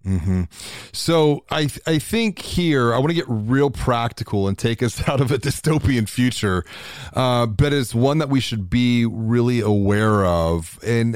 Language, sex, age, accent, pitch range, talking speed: English, male, 30-49, American, 110-155 Hz, 185 wpm